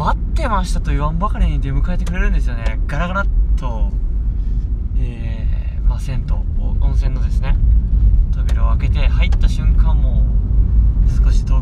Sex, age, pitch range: male, 20-39, 65-85 Hz